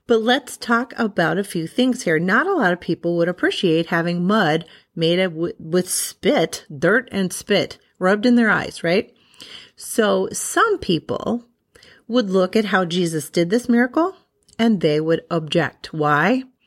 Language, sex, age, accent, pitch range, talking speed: English, female, 40-59, American, 170-230 Hz, 165 wpm